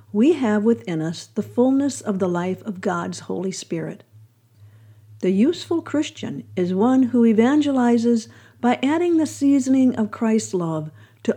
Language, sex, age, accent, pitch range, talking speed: English, female, 50-69, American, 155-245 Hz, 150 wpm